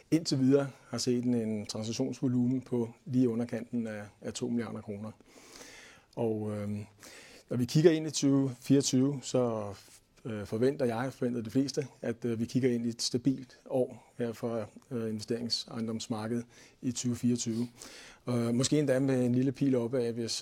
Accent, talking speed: native, 155 wpm